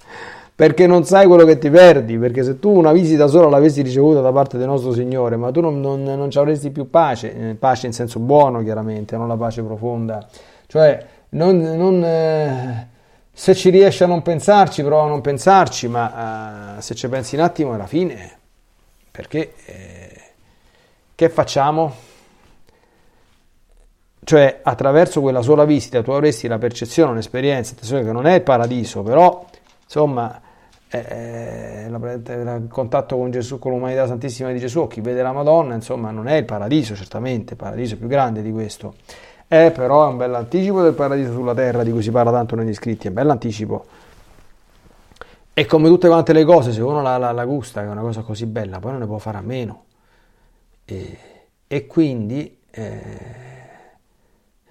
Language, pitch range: Italian, 115-155 Hz